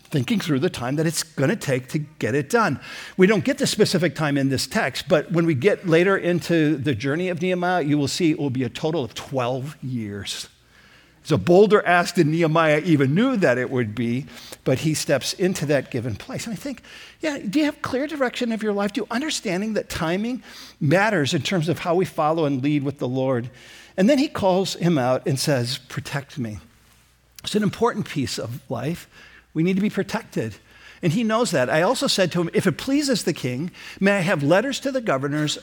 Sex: male